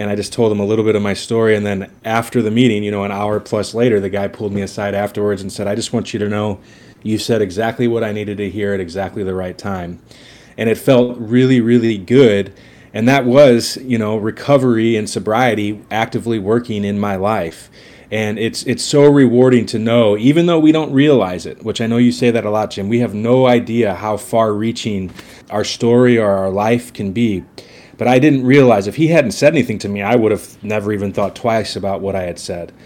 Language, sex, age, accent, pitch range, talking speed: English, male, 30-49, American, 105-120 Hz, 230 wpm